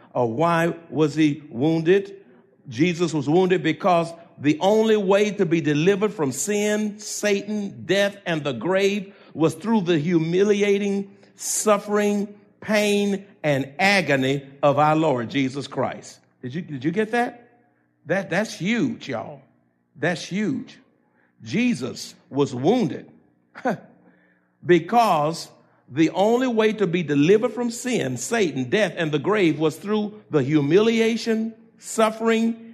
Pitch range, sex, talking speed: 150-225 Hz, male, 125 wpm